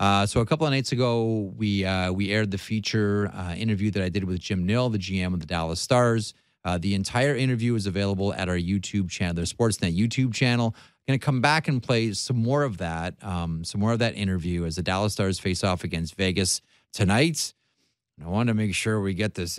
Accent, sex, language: American, male, English